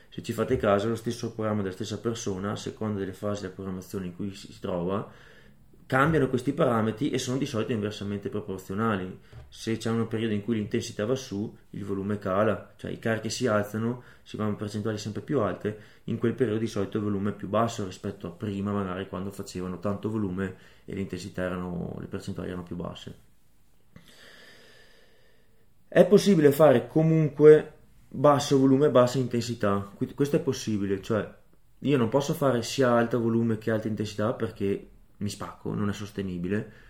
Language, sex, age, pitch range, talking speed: Italian, male, 20-39, 100-120 Hz, 170 wpm